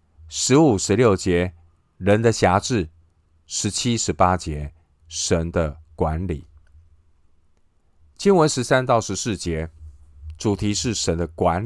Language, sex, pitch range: Chinese, male, 80-110 Hz